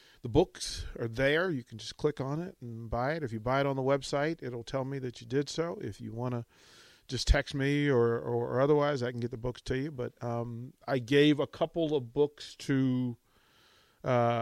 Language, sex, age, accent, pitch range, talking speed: English, male, 40-59, American, 120-155 Hz, 230 wpm